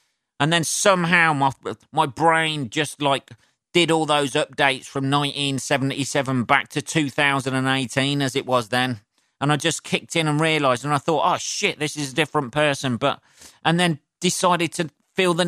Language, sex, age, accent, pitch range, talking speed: English, male, 40-59, British, 125-155 Hz, 175 wpm